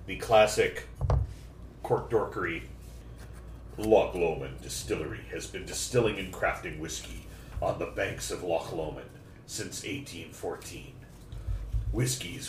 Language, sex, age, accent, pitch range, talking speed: English, male, 40-59, American, 95-120 Hz, 105 wpm